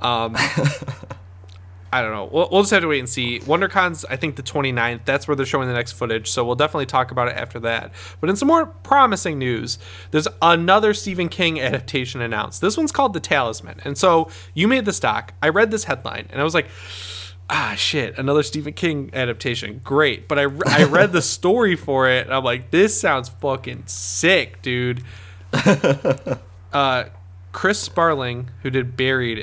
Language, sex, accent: English, male, American